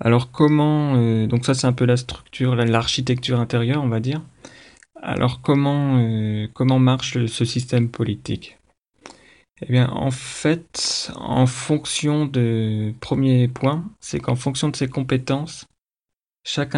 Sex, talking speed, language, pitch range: male, 135 wpm, French, 115-135 Hz